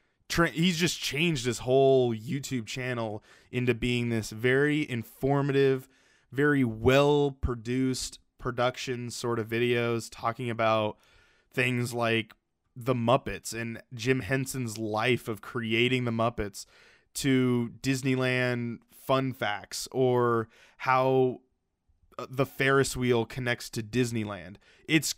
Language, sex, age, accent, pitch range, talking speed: English, male, 20-39, American, 115-135 Hz, 110 wpm